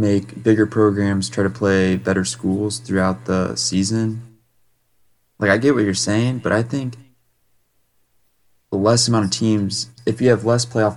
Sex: male